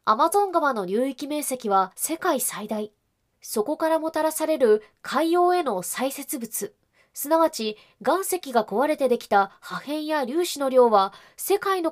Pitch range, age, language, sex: 220-315 Hz, 20-39, Japanese, female